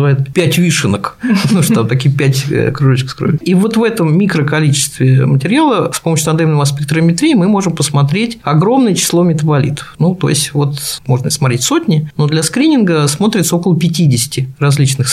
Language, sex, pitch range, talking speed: Russian, male, 140-175 Hz, 165 wpm